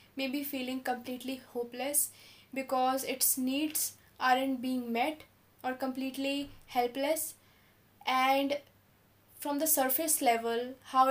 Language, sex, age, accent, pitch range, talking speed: English, female, 10-29, Indian, 250-275 Hz, 105 wpm